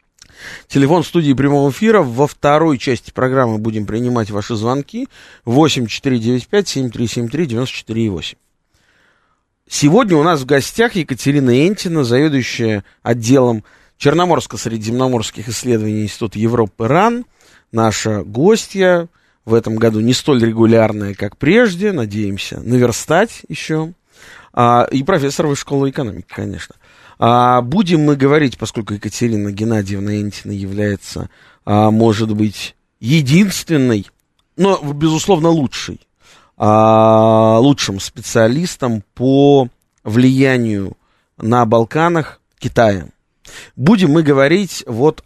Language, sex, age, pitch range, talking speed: Russian, male, 20-39, 110-150 Hz, 95 wpm